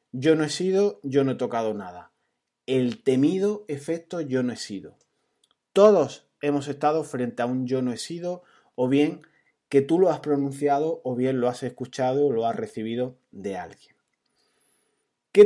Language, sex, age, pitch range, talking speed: Spanish, male, 30-49, 125-170 Hz, 175 wpm